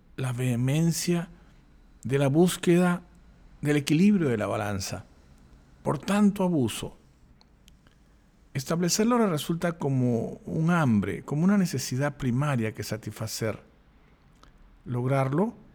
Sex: male